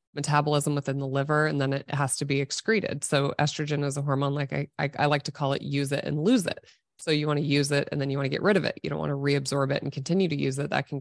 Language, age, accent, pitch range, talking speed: English, 20-39, American, 140-155 Hz, 310 wpm